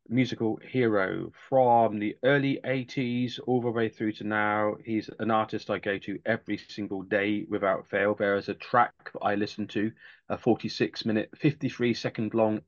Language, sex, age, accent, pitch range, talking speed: English, male, 30-49, British, 105-130 Hz, 170 wpm